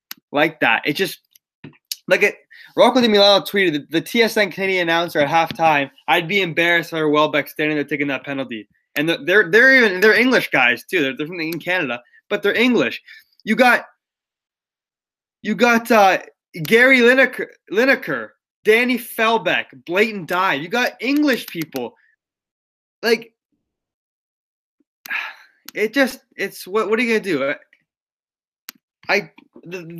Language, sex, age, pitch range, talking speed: English, male, 20-39, 145-220 Hz, 150 wpm